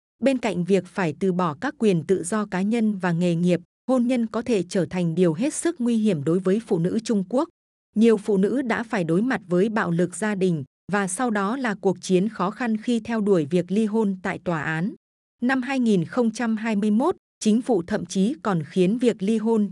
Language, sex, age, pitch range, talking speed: Vietnamese, female, 20-39, 180-225 Hz, 220 wpm